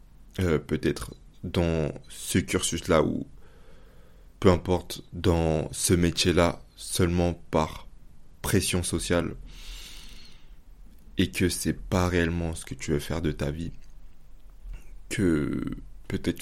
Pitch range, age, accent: 80-95 Hz, 20-39, French